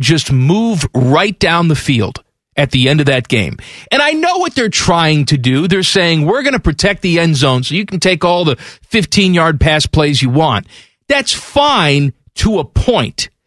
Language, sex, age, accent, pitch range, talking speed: English, male, 40-59, American, 145-210 Hz, 205 wpm